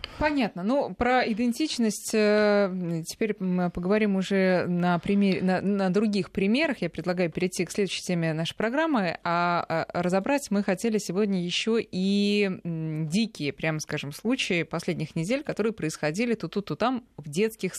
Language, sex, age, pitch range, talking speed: Russian, female, 20-39, 160-215 Hz, 145 wpm